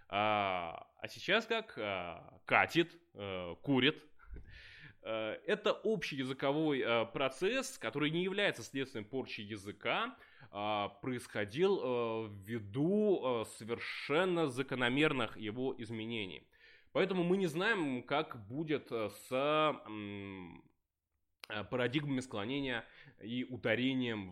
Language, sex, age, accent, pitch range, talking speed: Russian, male, 20-39, native, 110-150 Hz, 80 wpm